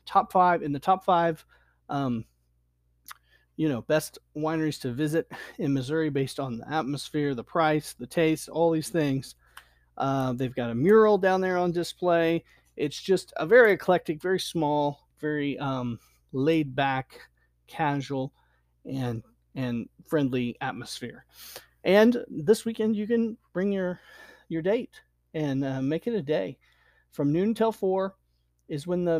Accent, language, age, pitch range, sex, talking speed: American, English, 40-59, 125-165 Hz, male, 150 wpm